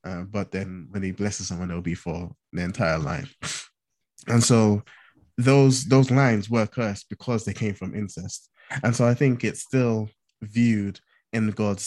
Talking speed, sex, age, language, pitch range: 170 wpm, male, 20-39, English, 95-115 Hz